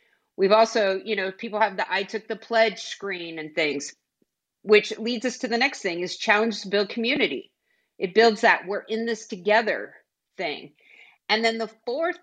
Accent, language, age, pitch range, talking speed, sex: American, English, 40-59, 195-230 Hz, 185 wpm, female